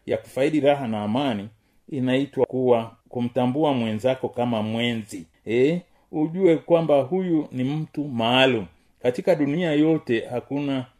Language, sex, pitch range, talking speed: Swahili, male, 115-155 Hz, 120 wpm